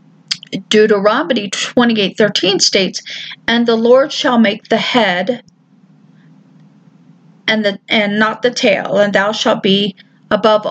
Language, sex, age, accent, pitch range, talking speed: English, female, 40-59, American, 195-235 Hz, 120 wpm